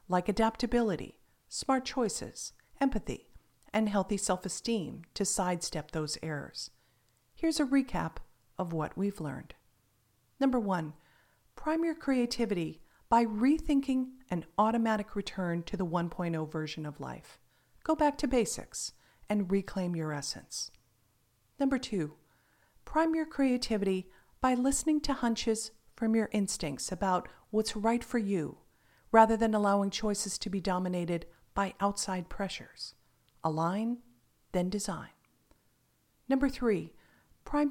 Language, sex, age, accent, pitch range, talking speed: English, female, 40-59, American, 165-240 Hz, 120 wpm